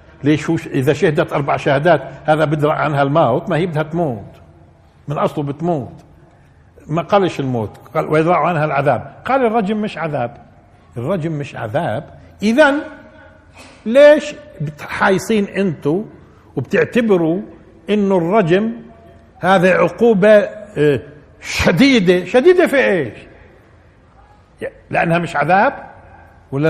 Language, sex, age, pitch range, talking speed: Arabic, male, 60-79, 135-195 Hz, 105 wpm